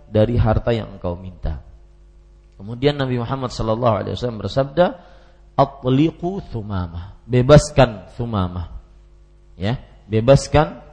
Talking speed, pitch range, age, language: 100 wpm, 105-145 Hz, 40-59, Malay